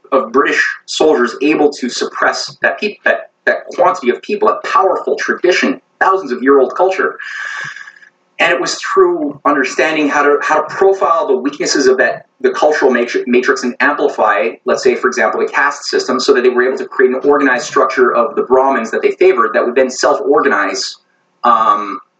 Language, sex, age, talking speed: English, male, 30-49, 185 wpm